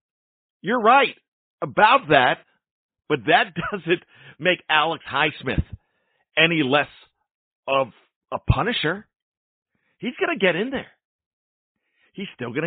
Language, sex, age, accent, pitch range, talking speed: English, male, 50-69, American, 115-165 Hz, 115 wpm